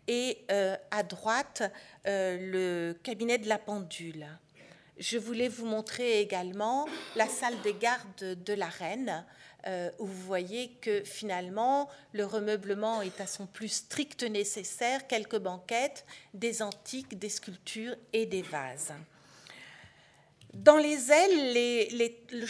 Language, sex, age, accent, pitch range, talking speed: French, female, 50-69, French, 210-260 Hz, 135 wpm